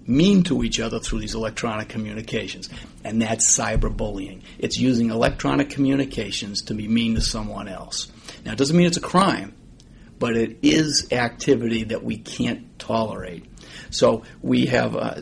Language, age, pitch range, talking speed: English, 50-69, 105-135 Hz, 160 wpm